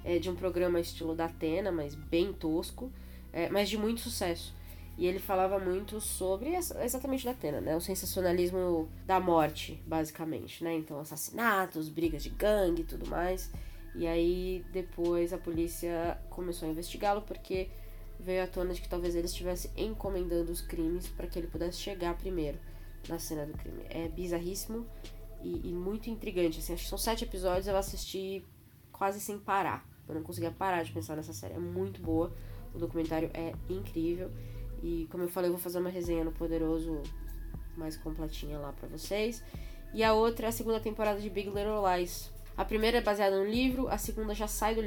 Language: Portuguese